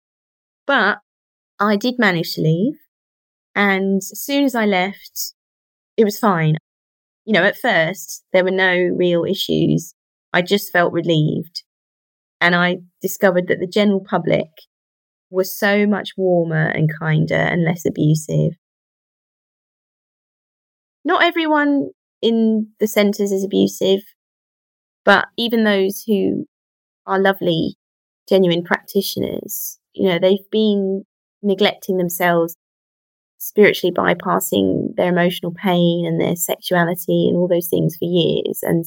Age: 20-39